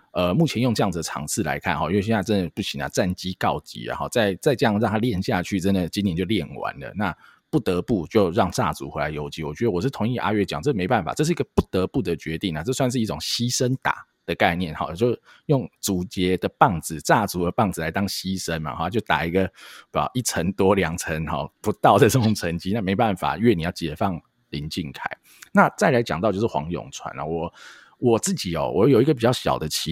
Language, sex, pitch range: Chinese, male, 80-110 Hz